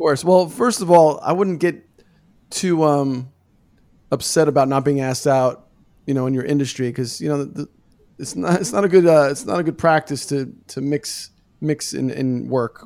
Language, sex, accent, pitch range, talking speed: English, male, American, 135-180 Hz, 210 wpm